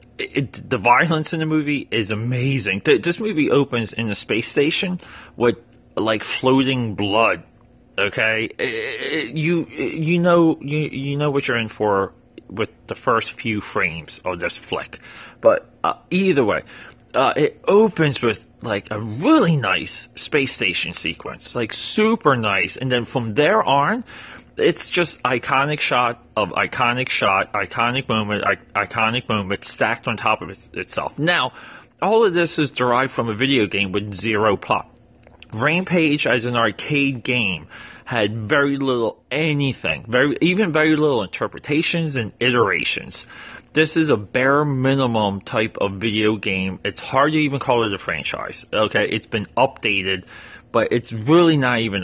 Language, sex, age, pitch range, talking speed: English, male, 30-49, 110-150 Hz, 160 wpm